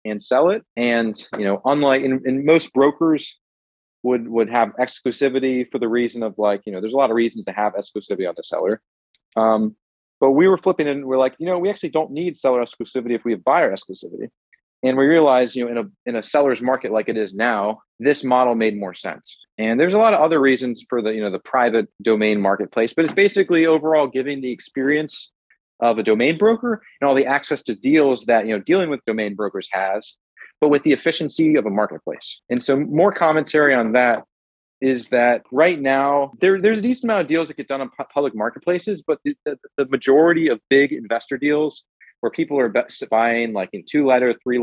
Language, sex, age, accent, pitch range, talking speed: English, male, 30-49, American, 115-150 Hz, 220 wpm